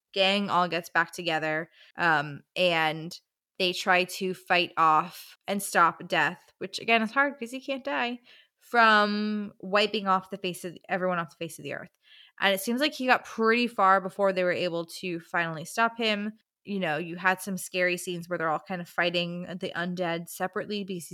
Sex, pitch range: female, 175-215 Hz